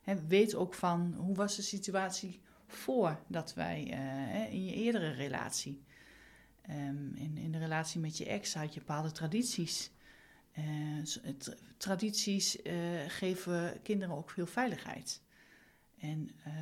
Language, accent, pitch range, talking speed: Dutch, Dutch, 160-200 Hz, 125 wpm